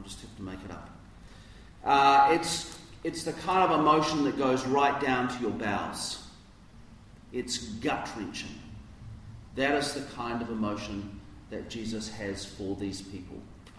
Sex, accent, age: male, Australian, 40-59